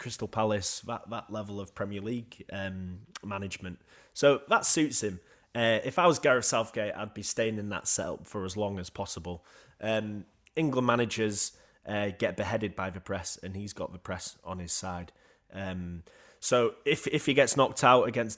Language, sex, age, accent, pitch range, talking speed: English, male, 20-39, British, 95-120 Hz, 185 wpm